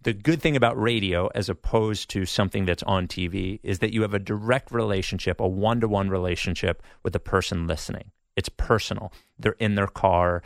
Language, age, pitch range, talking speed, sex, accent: English, 30-49, 95-115 Hz, 185 wpm, male, American